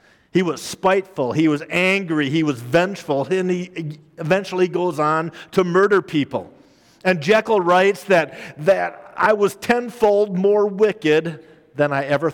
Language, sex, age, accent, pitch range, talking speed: English, male, 50-69, American, 145-185 Hz, 145 wpm